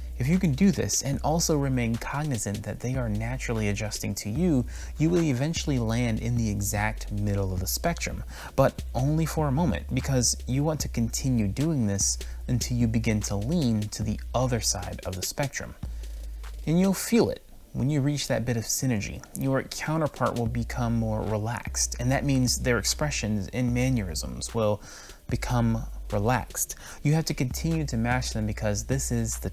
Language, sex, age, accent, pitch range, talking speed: English, male, 30-49, American, 100-130 Hz, 180 wpm